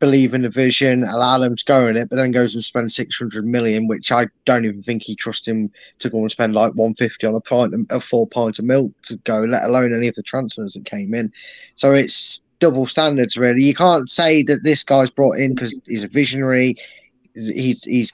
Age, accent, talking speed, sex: 10-29, British, 235 wpm, male